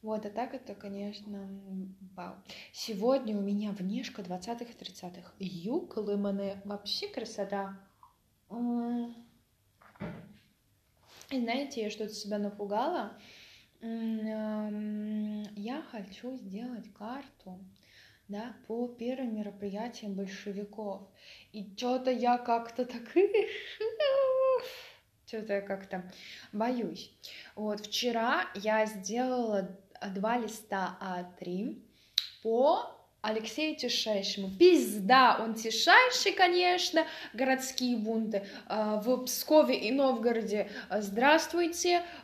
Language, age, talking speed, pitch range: Russian, 20-39, 90 wpm, 200-265 Hz